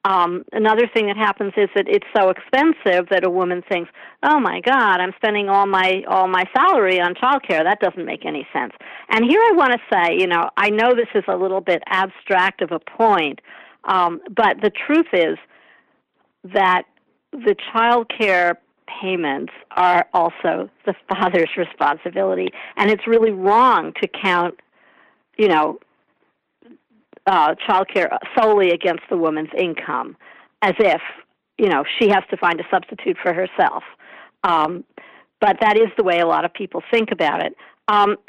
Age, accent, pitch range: 60-79, American, 185-230 Hz